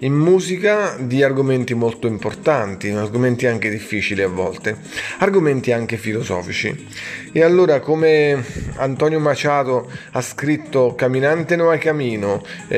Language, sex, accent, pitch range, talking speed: Italian, male, native, 125-160 Hz, 115 wpm